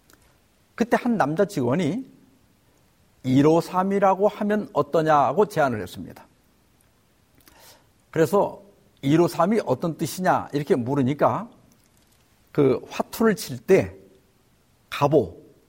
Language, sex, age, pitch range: Korean, male, 50-69, 145-215 Hz